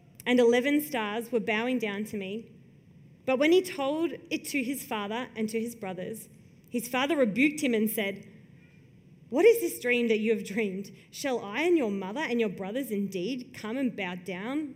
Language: English